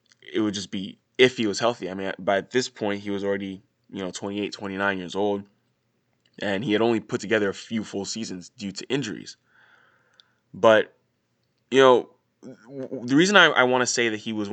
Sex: male